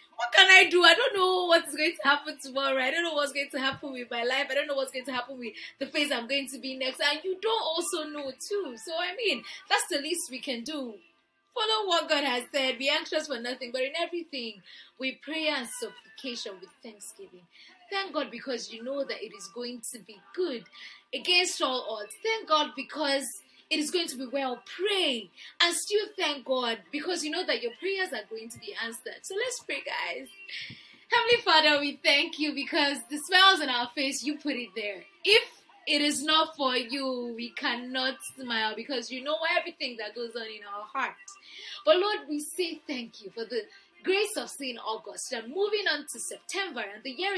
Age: 20-39